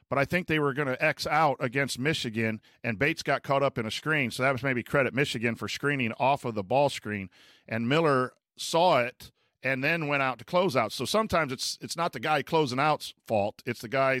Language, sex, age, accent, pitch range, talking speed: English, male, 50-69, American, 120-150 Hz, 235 wpm